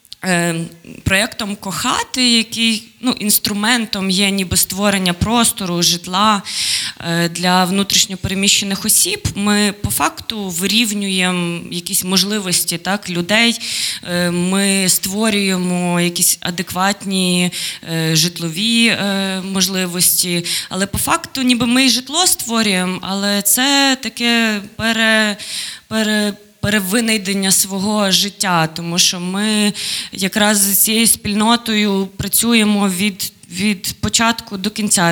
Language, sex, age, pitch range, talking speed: Ukrainian, female, 20-39, 180-210 Hz, 90 wpm